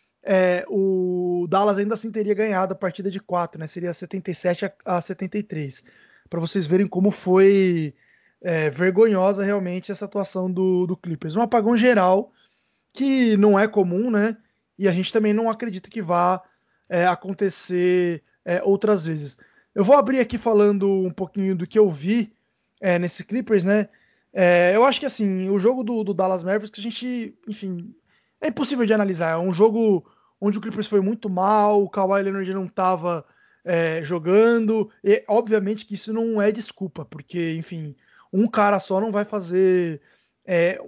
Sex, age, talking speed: male, 20-39, 160 wpm